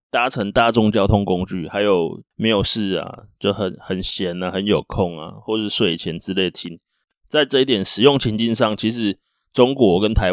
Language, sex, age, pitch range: Chinese, male, 20-39, 100-120 Hz